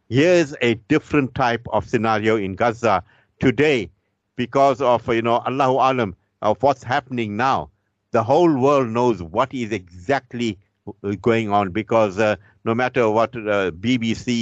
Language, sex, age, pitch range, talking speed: English, male, 50-69, 95-120 Hz, 145 wpm